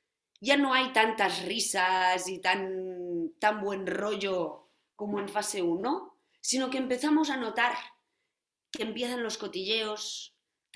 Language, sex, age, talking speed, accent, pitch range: Spanish, female, 20-39, 135 wpm, Spanish, 185-265 Hz